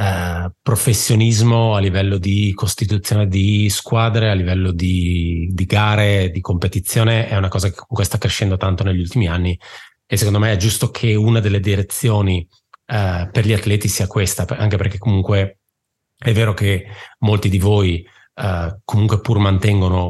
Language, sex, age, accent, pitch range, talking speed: Italian, male, 30-49, native, 90-105 Hz, 150 wpm